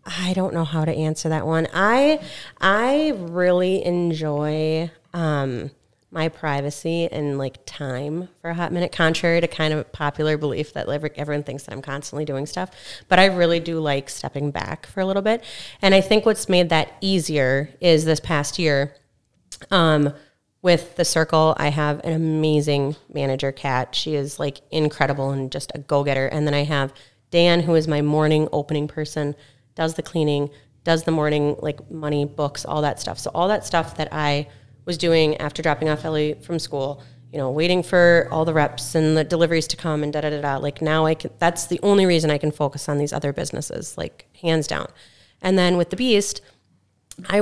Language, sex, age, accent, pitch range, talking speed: English, female, 30-49, American, 145-170 Hz, 195 wpm